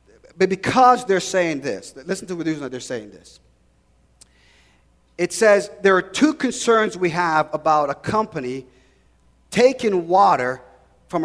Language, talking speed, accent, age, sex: English, 135 wpm, American, 40-59, male